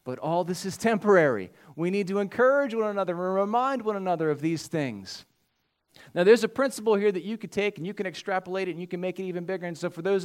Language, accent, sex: English, American, male